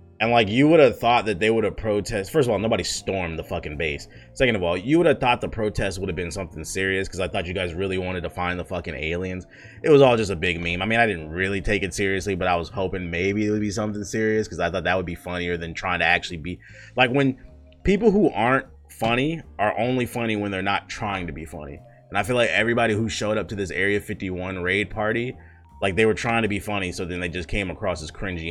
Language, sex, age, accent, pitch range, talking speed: English, male, 30-49, American, 90-120 Hz, 265 wpm